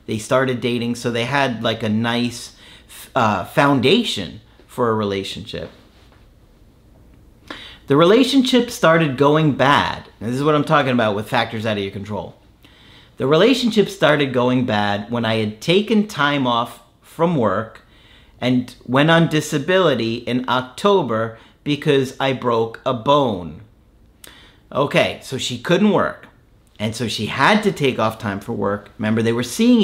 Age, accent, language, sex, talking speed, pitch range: 40-59, American, English, male, 150 wpm, 110-145 Hz